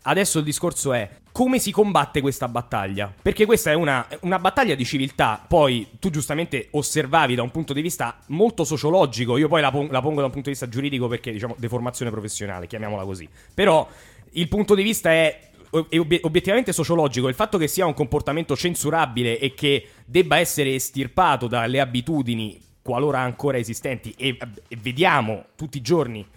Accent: native